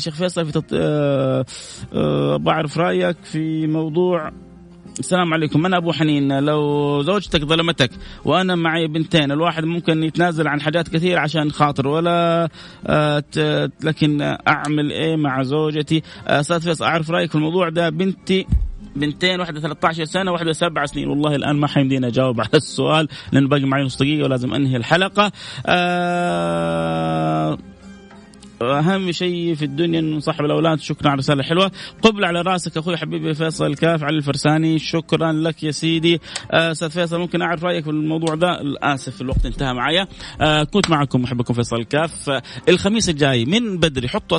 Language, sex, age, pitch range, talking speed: Arabic, male, 30-49, 135-170 Hz, 160 wpm